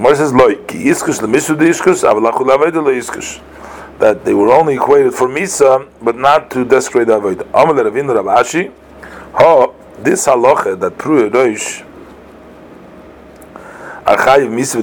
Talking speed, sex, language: 50 wpm, male, English